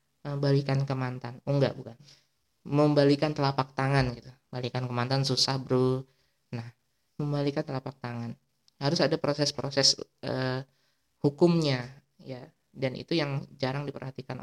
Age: 20-39